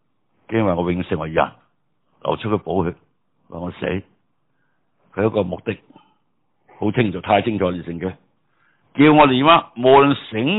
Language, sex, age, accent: Chinese, male, 60-79, native